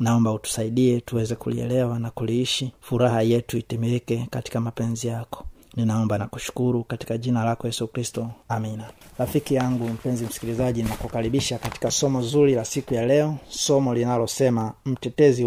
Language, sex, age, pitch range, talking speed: Swahili, male, 30-49, 115-130 Hz, 140 wpm